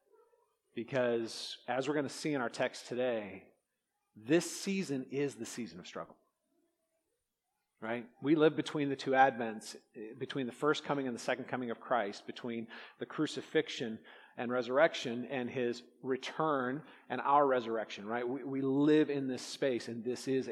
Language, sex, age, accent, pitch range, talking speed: English, male, 40-59, American, 120-150 Hz, 160 wpm